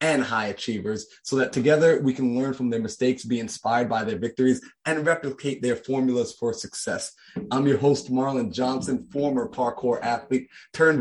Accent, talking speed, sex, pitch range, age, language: American, 175 wpm, male, 120-145 Hz, 20-39, English